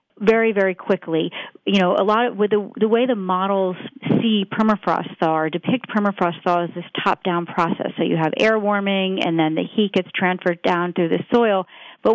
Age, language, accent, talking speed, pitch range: 40-59, English, American, 210 wpm, 180-220 Hz